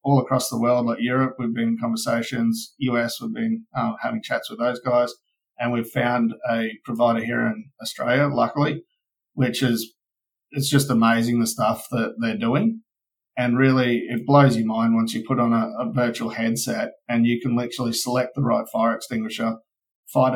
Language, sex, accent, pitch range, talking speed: English, male, Australian, 115-135 Hz, 185 wpm